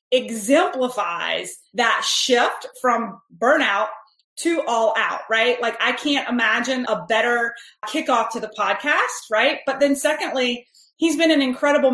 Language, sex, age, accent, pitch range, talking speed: English, female, 30-49, American, 220-275 Hz, 135 wpm